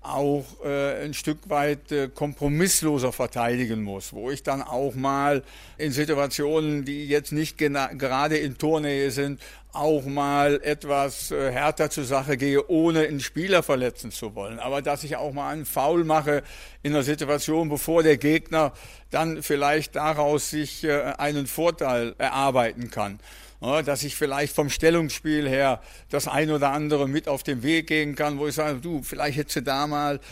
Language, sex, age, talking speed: German, male, 60-79, 160 wpm